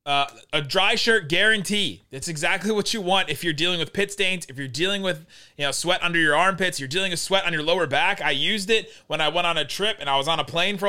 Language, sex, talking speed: English, male, 275 wpm